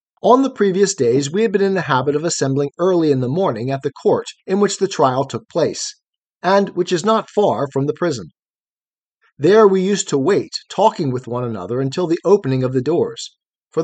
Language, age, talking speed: English, 40-59, 215 wpm